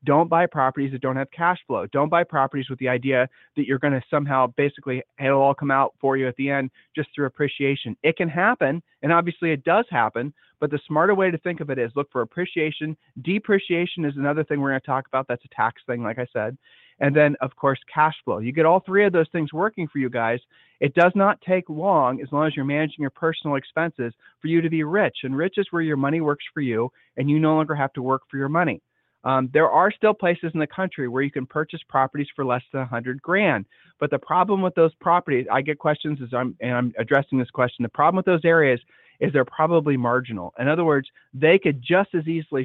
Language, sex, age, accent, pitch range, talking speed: English, male, 30-49, American, 135-170 Hz, 245 wpm